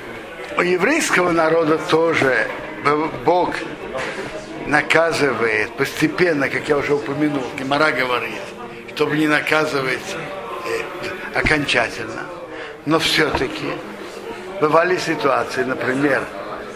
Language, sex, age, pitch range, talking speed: Russian, male, 60-79, 150-185 Hz, 80 wpm